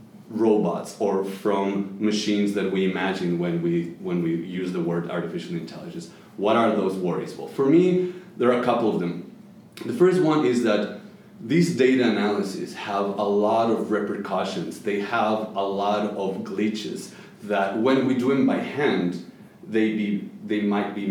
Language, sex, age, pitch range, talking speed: English, male, 30-49, 100-130 Hz, 170 wpm